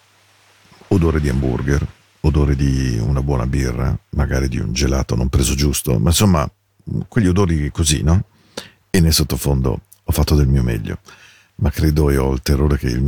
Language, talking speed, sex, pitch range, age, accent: Spanish, 170 wpm, male, 65-85 Hz, 50-69, Italian